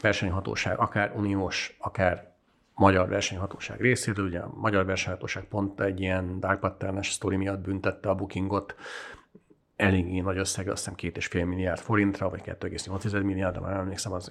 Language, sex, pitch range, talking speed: Hungarian, male, 95-110 Hz, 150 wpm